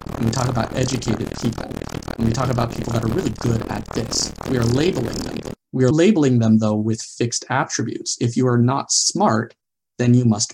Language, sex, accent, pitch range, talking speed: English, male, American, 115-135 Hz, 210 wpm